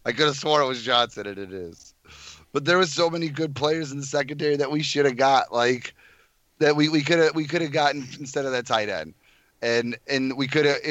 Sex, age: male, 30-49